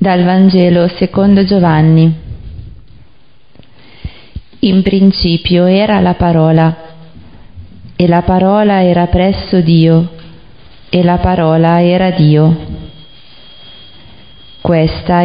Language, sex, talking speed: Italian, female, 85 wpm